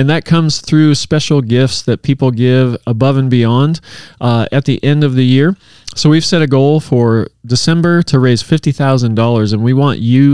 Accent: American